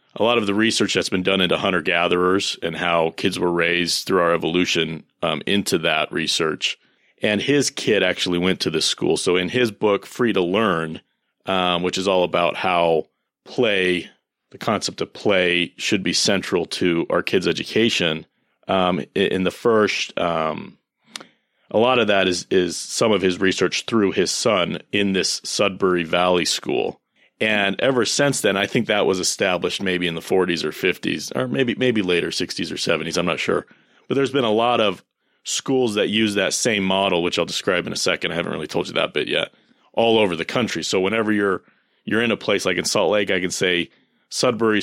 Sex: male